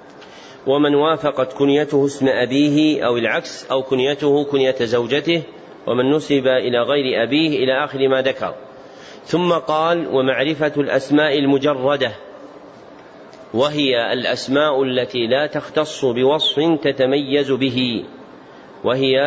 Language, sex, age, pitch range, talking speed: Arabic, male, 40-59, 130-145 Hz, 105 wpm